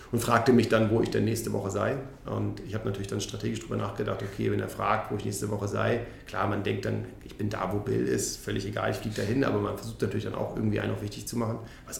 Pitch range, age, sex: 100-115 Hz, 40-59, male